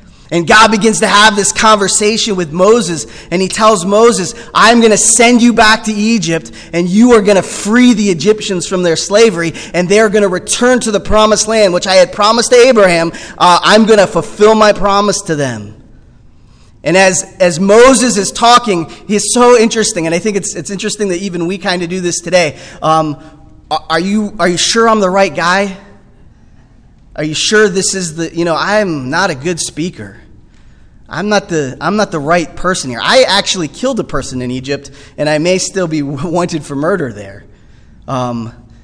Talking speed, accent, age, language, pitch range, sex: 200 wpm, American, 20-39, English, 165-210 Hz, male